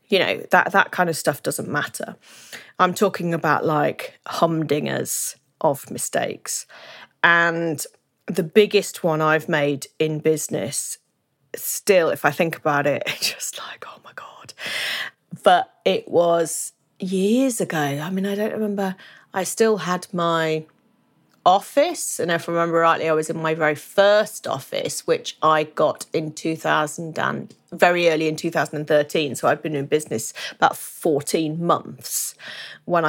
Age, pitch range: 30-49, 155-195 Hz